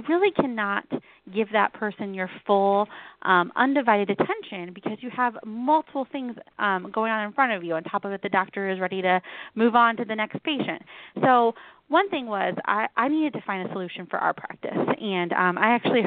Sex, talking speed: female, 205 wpm